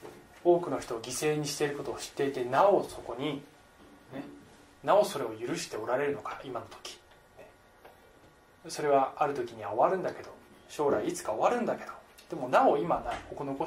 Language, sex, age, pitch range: Japanese, male, 20-39, 120-180 Hz